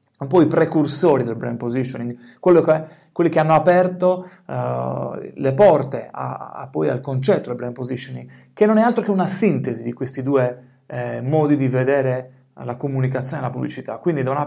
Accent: native